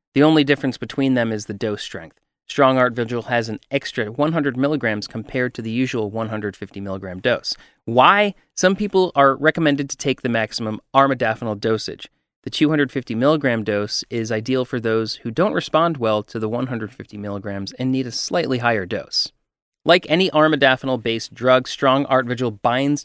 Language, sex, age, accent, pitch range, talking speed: English, male, 30-49, American, 110-145 Hz, 170 wpm